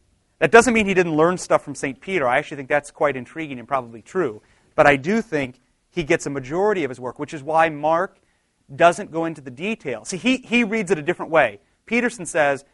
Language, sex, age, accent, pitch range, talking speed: English, male, 30-49, American, 125-165 Hz, 230 wpm